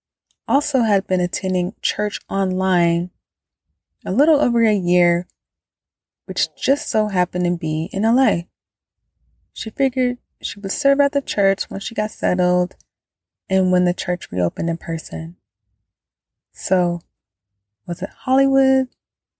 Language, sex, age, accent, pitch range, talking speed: English, female, 20-39, American, 170-220 Hz, 130 wpm